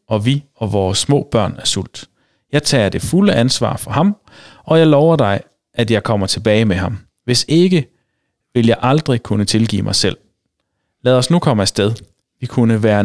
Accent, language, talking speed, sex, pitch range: native, Danish, 195 wpm, male, 105-140 Hz